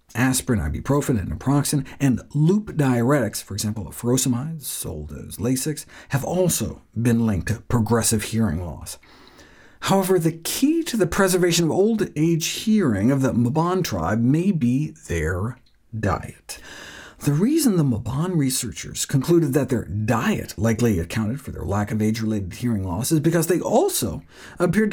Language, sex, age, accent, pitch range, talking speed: English, male, 50-69, American, 110-175 Hz, 150 wpm